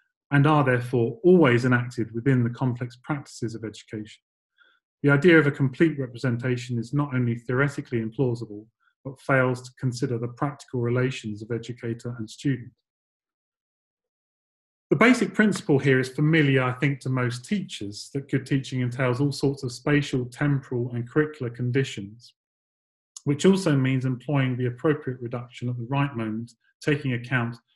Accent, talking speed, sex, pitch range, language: British, 150 wpm, male, 120-145 Hz, English